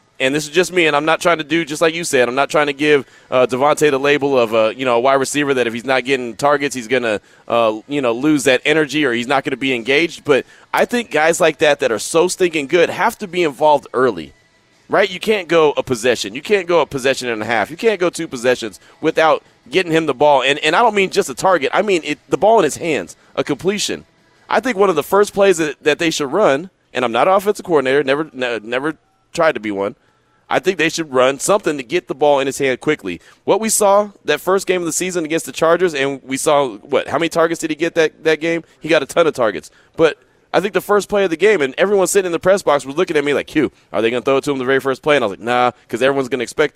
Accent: American